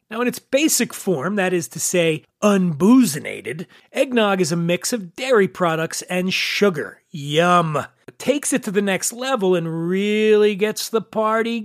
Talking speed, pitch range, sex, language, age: 165 wpm, 170-225 Hz, male, English, 40-59